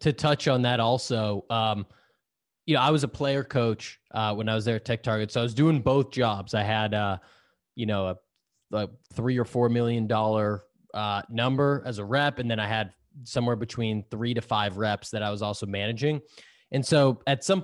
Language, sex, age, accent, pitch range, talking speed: English, male, 20-39, American, 110-135 Hz, 215 wpm